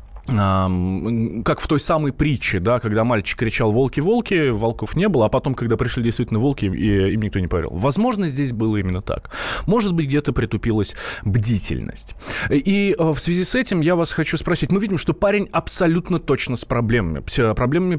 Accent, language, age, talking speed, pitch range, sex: native, Russian, 20-39, 170 wpm, 110-155 Hz, male